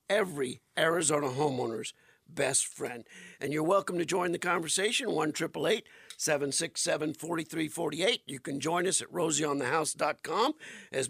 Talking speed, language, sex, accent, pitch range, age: 120 wpm, English, male, American, 155-195 Hz, 50-69